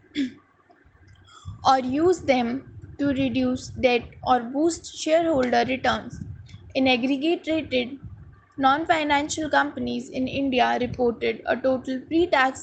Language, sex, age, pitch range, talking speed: English, female, 20-39, 250-300 Hz, 95 wpm